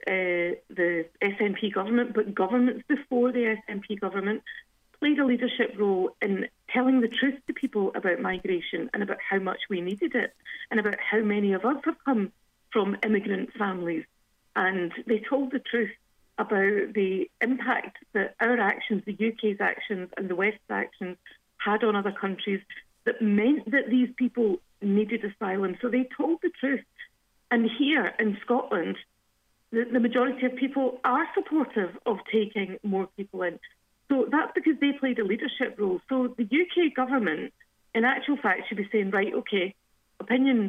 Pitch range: 200-250 Hz